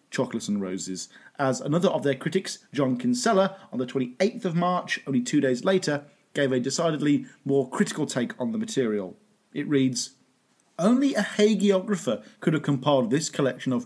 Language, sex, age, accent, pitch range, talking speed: English, male, 40-59, British, 140-215 Hz, 170 wpm